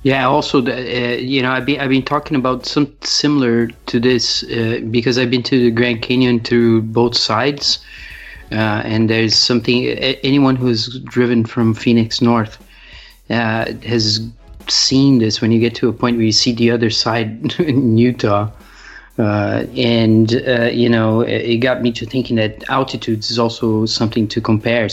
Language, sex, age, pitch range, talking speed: English, male, 30-49, 110-125 Hz, 170 wpm